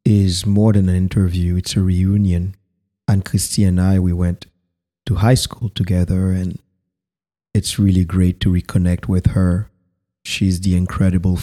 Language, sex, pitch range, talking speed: English, male, 90-100 Hz, 150 wpm